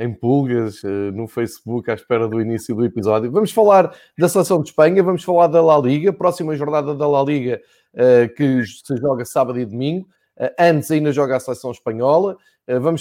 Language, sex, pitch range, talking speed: Portuguese, male, 130-155 Hz, 180 wpm